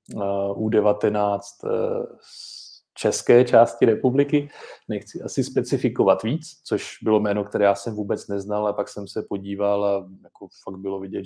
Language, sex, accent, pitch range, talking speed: Czech, male, native, 100-105 Hz, 145 wpm